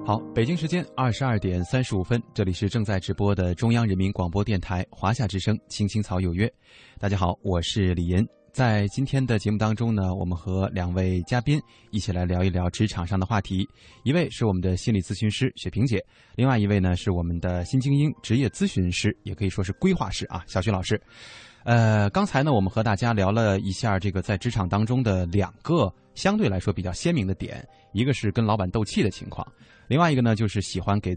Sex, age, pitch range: male, 20-39, 95-120 Hz